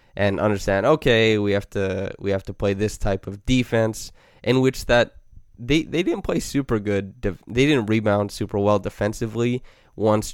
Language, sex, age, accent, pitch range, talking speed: English, male, 20-39, American, 95-110 Hz, 175 wpm